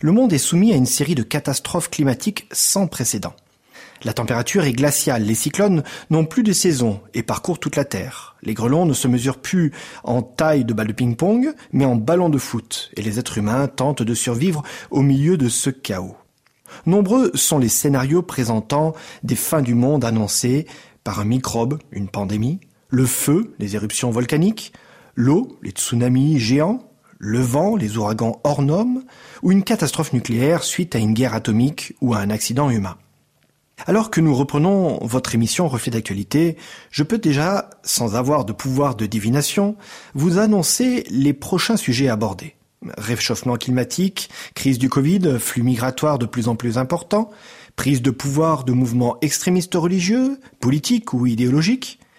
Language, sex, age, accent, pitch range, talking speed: French, male, 30-49, French, 120-175 Hz, 165 wpm